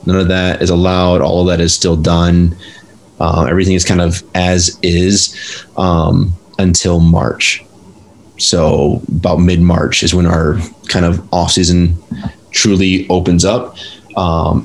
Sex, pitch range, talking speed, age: male, 85-95 Hz, 140 wpm, 20-39